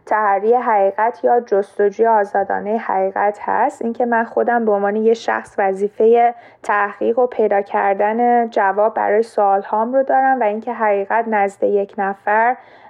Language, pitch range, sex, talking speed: Persian, 205-230 Hz, female, 140 wpm